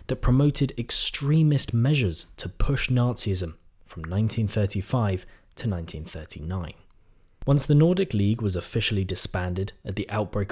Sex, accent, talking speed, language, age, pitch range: male, British, 120 wpm, English, 20-39, 95-130 Hz